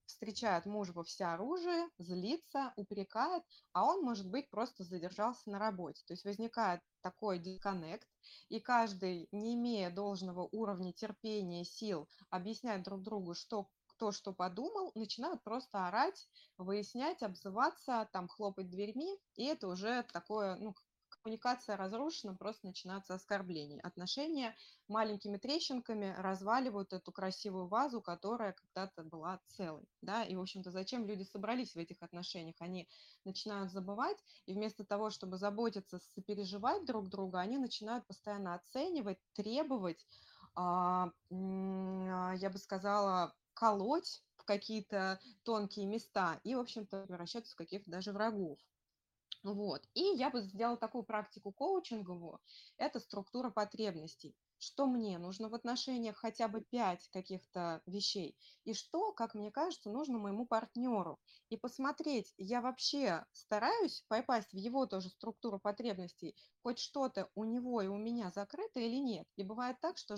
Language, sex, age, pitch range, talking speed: Russian, female, 20-39, 190-235 Hz, 140 wpm